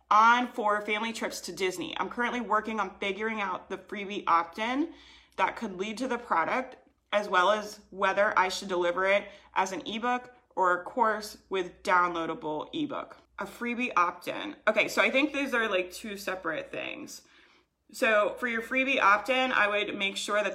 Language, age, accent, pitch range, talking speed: English, 20-39, American, 185-230 Hz, 180 wpm